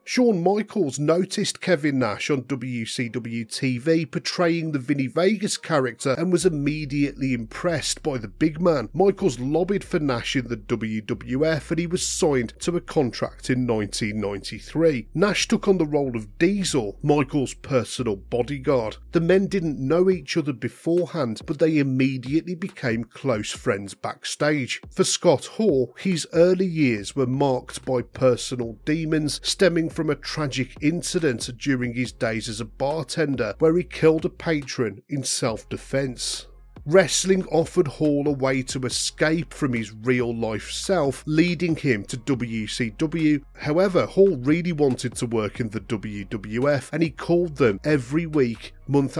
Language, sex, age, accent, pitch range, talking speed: English, male, 40-59, British, 125-165 Hz, 150 wpm